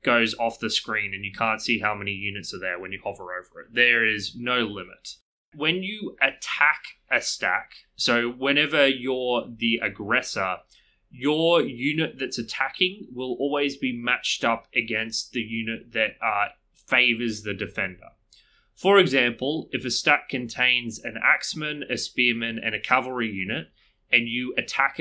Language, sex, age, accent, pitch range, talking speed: English, male, 20-39, Australian, 110-135 Hz, 160 wpm